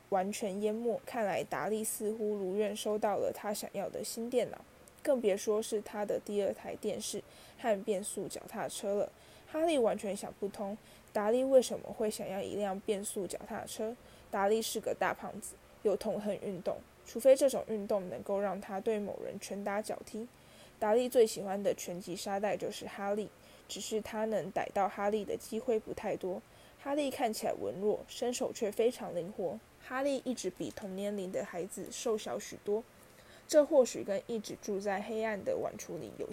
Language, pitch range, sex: Chinese, 200-230 Hz, female